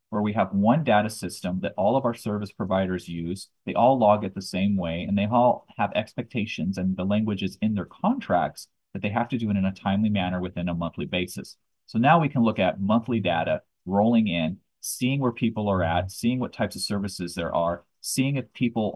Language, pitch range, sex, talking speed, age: English, 95-120 Hz, male, 220 wpm, 30-49